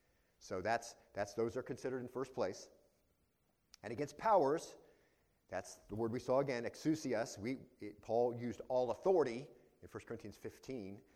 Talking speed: 160 wpm